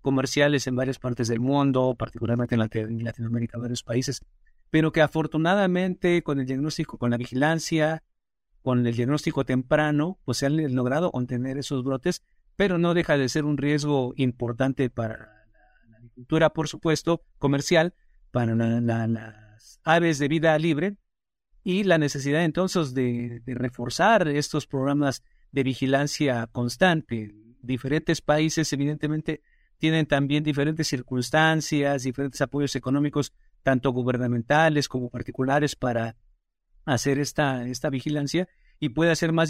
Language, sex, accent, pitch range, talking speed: Spanish, male, Mexican, 125-155 Hz, 135 wpm